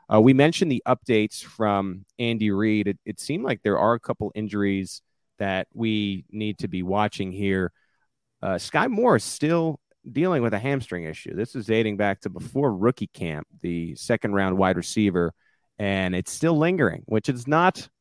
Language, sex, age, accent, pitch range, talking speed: English, male, 30-49, American, 95-130 Hz, 175 wpm